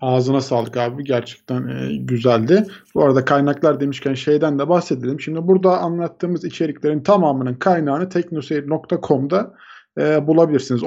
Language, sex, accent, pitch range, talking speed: Turkish, male, native, 125-165 Hz, 120 wpm